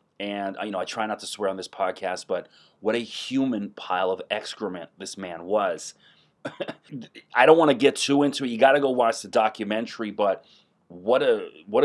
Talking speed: 205 wpm